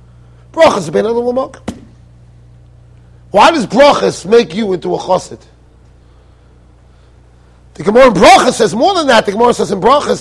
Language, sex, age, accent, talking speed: English, male, 40-59, American, 125 wpm